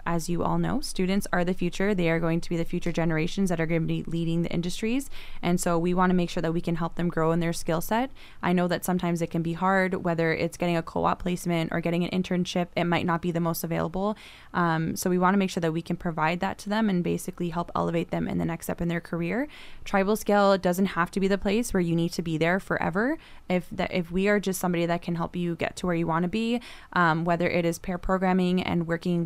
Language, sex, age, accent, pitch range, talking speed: English, female, 10-29, American, 170-190 Hz, 275 wpm